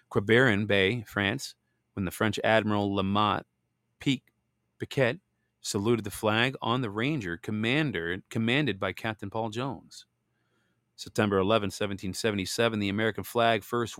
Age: 40-59